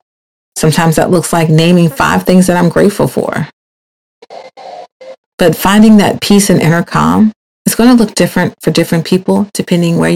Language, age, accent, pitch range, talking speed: English, 40-59, American, 165-205 Hz, 165 wpm